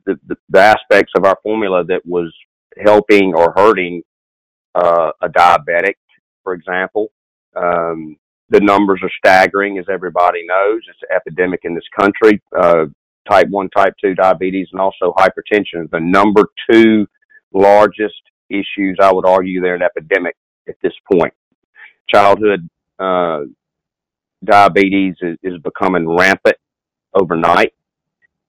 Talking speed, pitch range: 130 wpm, 90-105 Hz